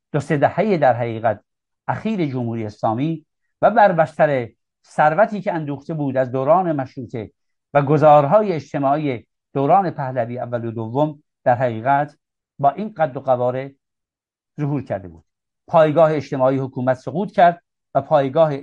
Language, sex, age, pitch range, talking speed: Persian, male, 60-79, 120-165 Hz, 130 wpm